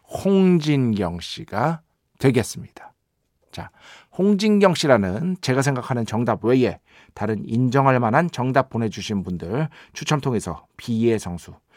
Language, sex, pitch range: Korean, male, 110-150 Hz